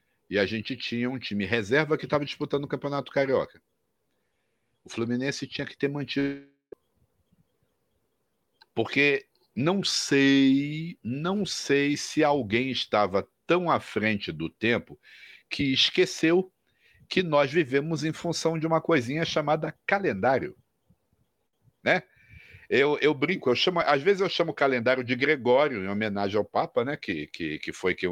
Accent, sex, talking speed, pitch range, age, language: Brazilian, male, 145 wpm, 130-185 Hz, 60-79, Portuguese